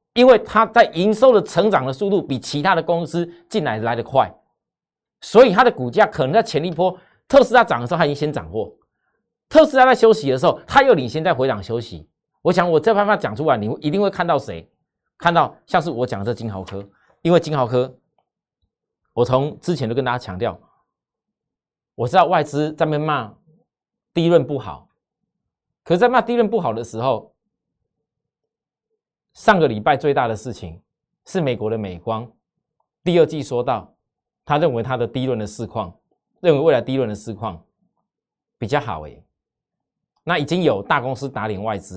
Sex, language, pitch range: male, Chinese, 115-175 Hz